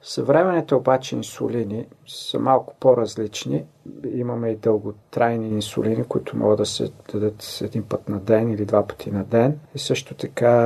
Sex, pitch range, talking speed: male, 110-130 Hz, 150 wpm